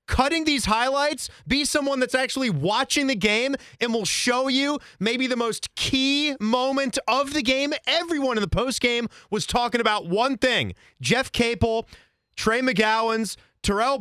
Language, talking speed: English, 160 wpm